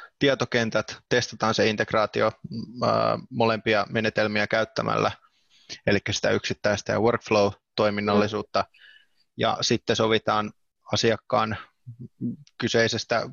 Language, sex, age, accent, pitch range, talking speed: Finnish, male, 20-39, native, 110-120 Hz, 75 wpm